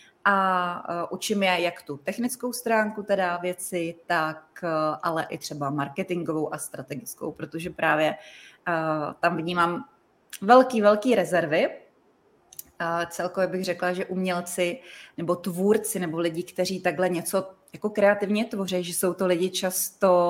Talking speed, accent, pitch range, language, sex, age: 135 wpm, native, 170-200 Hz, Czech, female, 20-39